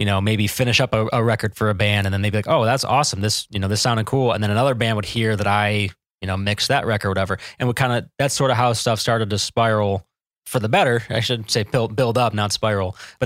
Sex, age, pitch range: male, 20-39, 100-120 Hz